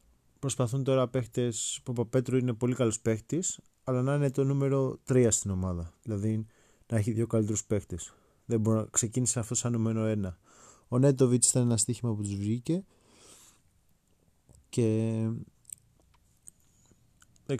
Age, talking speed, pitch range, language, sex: 20-39, 135 wpm, 105-130 Hz, Greek, male